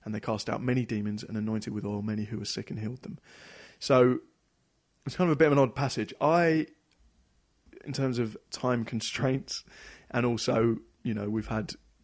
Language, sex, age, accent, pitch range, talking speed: English, male, 20-39, British, 110-135 Hz, 195 wpm